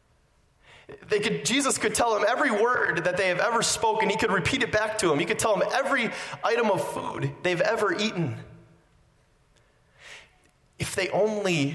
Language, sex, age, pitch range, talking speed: English, male, 30-49, 140-205 Hz, 165 wpm